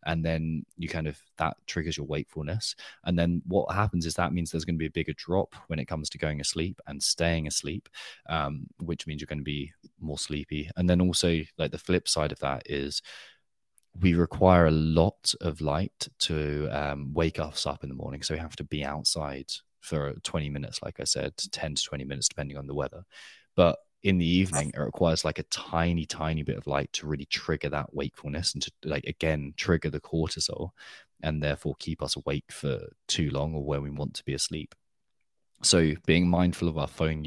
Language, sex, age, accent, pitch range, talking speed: English, male, 20-39, British, 75-85 Hz, 210 wpm